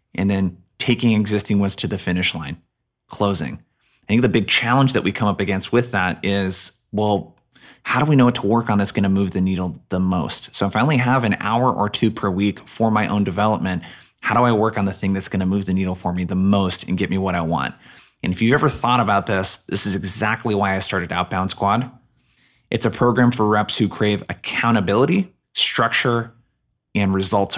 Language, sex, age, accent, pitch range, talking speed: English, male, 20-39, American, 95-120 Hz, 225 wpm